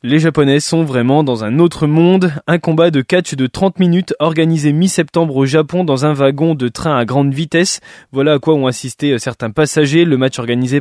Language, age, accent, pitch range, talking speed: French, 20-39, French, 130-170 Hz, 205 wpm